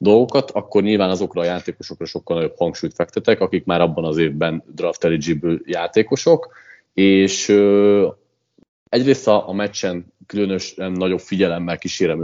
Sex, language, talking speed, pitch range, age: male, Hungarian, 130 wpm, 90-105 Hz, 30-49